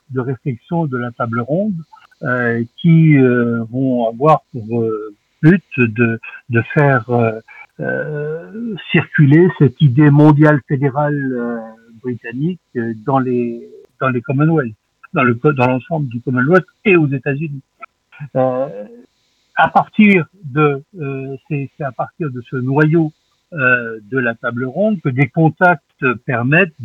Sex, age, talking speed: male, 60-79, 135 wpm